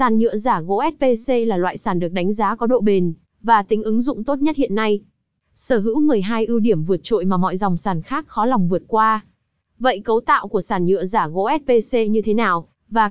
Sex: female